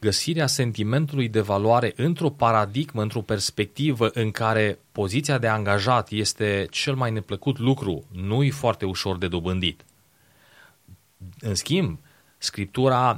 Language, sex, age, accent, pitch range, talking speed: Romanian, male, 30-49, native, 100-130 Hz, 120 wpm